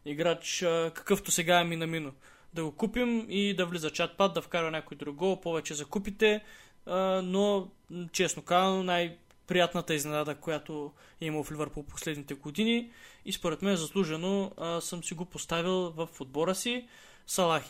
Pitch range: 165-200 Hz